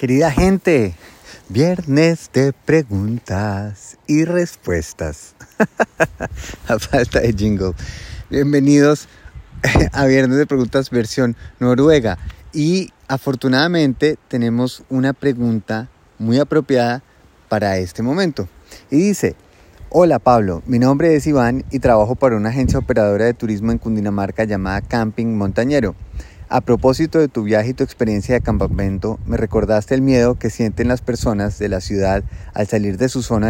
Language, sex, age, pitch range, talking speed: Spanish, male, 30-49, 100-135 Hz, 135 wpm